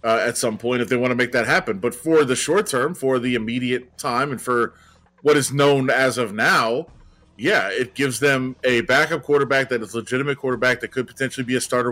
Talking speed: 230 wpm